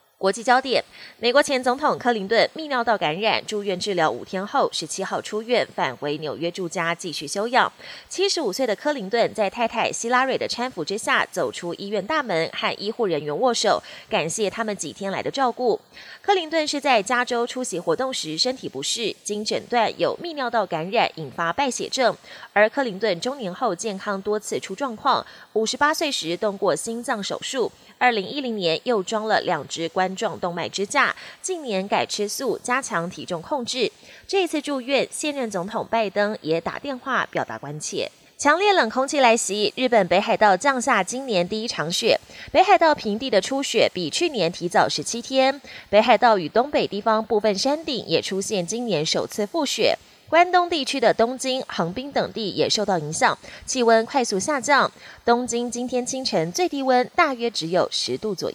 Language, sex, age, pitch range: Chinese, female, 20-39, 195-265 Hz